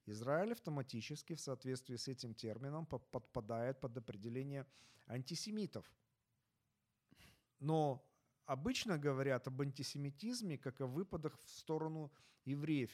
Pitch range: 120-155 Hz